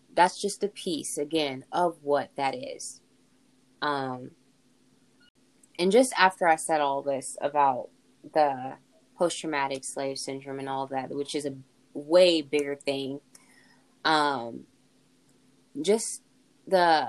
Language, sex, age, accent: English, female, 10-29, American